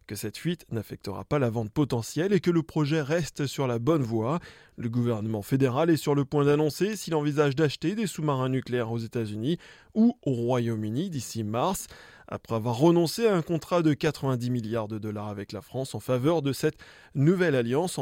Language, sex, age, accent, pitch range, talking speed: French, male, 20-39, French, 120-165 Hz, 195 wpm